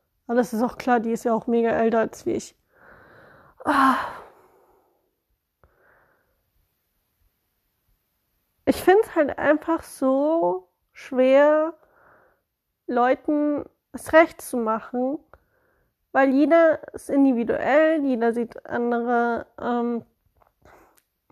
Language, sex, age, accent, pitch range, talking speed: German, female, 30-49, German, 245-315 Hz, 100 wpm